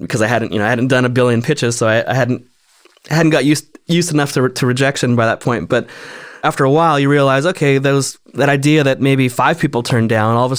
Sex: male